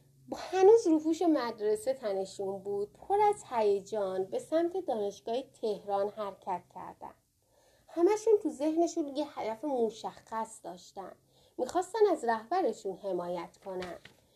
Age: 30-49